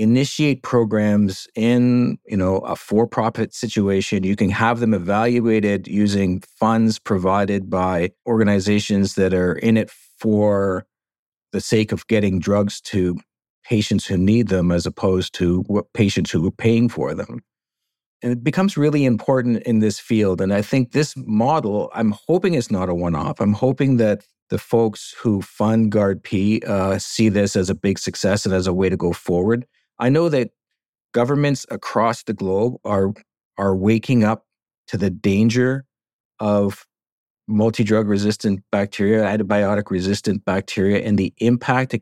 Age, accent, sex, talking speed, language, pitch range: 50-69, American, male, 155 wpm, English, 100-115 Hz